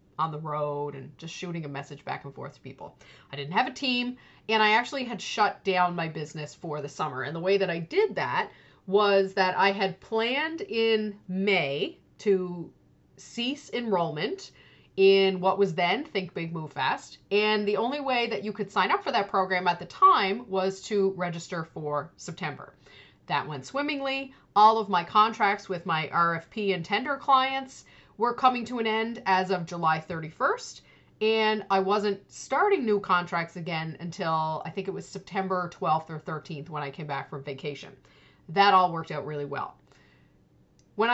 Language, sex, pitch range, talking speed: English, female, 165-225 Hz, 180 wpm